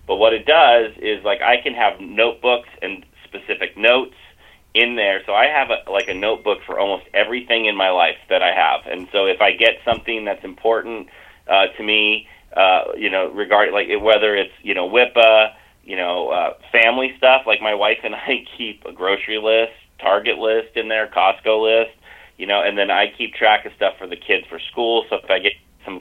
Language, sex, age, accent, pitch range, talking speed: English, male, 30-49, American, 100-115 Hz, 205 wpm